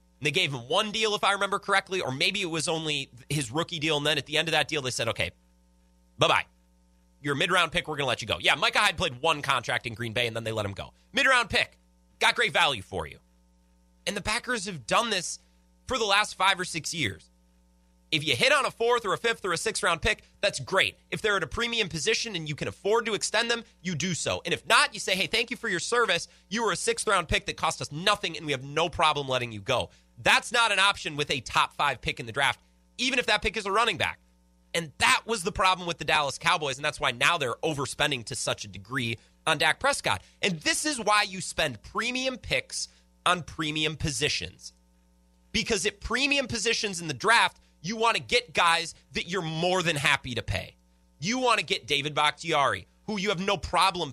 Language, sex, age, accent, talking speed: English, male, 30-49, American, 240 wpm